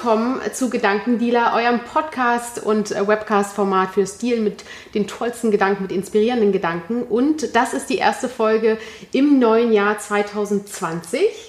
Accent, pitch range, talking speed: German, 215-245 Hz, 135 wpm